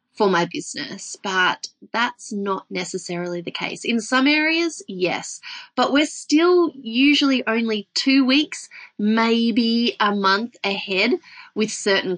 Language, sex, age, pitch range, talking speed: English, female, 20-39, 195-290 Hz, 130 wpm